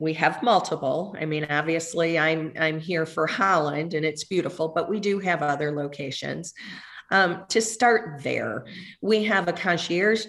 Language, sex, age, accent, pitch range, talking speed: English, female, 40-59, American, 160-190 Hz, 165 wpm